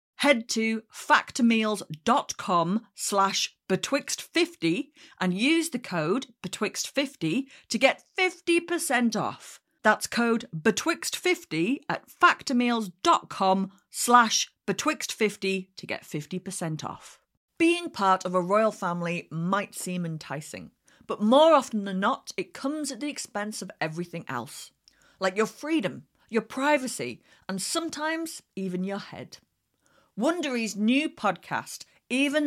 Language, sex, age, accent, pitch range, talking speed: English, female, 40-59, British, 185-260 Hz, 105 wpm